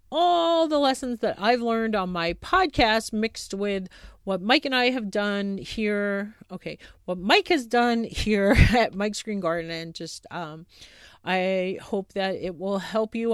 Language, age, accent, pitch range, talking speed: English, 40-59, American, 180-250 Hz, 170 wpm